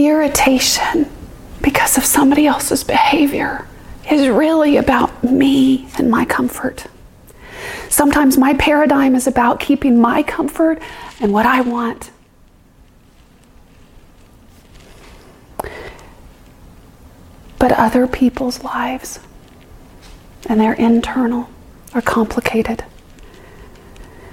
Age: 30-49